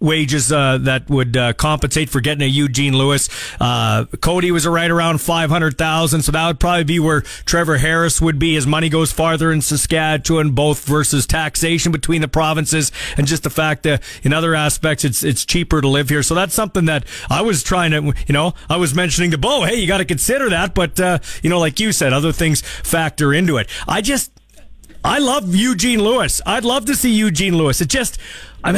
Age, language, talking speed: 40-59, English, 210 wpm